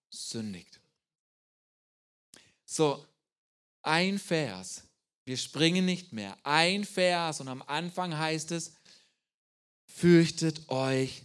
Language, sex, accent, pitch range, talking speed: German, male, German, 150-205 Hz, 90 wpm